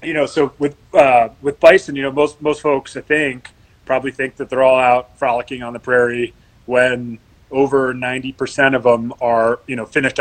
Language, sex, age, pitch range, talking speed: English, male, 30-49, 115-135 Hz, 195 wpm